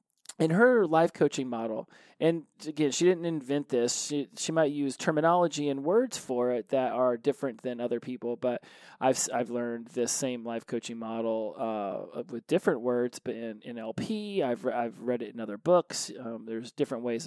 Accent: American